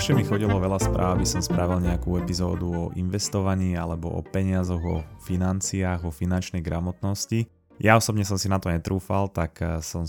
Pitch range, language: 90-105 Hz, Slovak